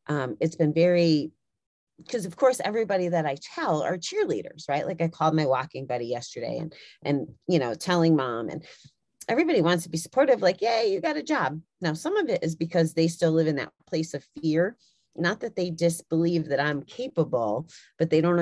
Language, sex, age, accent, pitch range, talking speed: English, female, 30-49, American, 145-185 Hz, 205 wpm